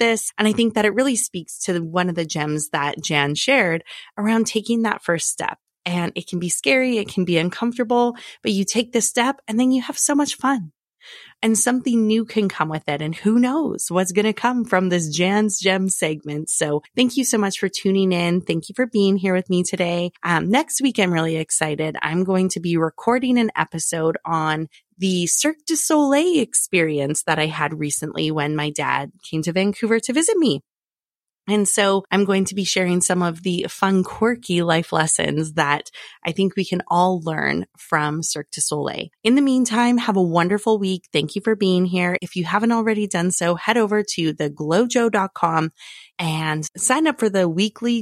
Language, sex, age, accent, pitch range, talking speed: English, female, 20-39, American, 165-225 Hz, 200 wpm